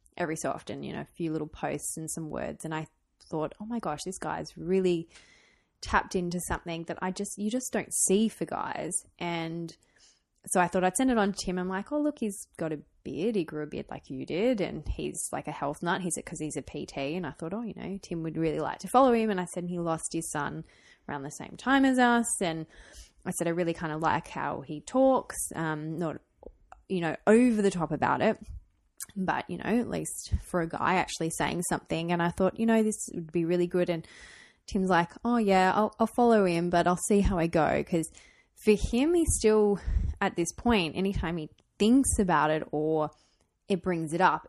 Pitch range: 160-200 Hz